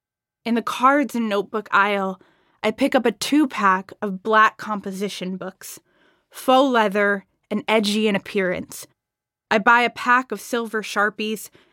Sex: female